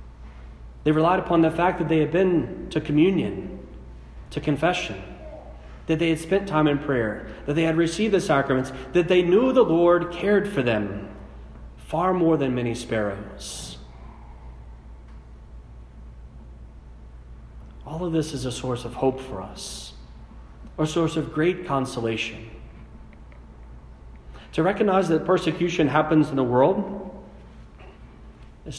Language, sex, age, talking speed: English, male, 40-59, 130 wpm